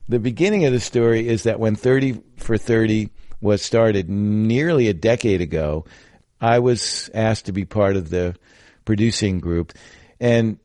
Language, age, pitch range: English, 50-69, 95-120 Hz